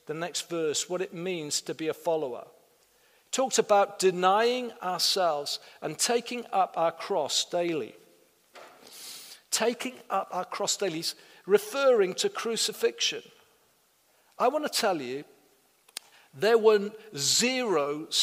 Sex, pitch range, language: male, 170-235 Hz, English